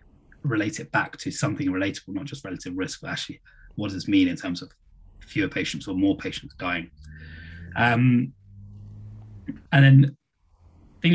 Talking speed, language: 155 wpm, English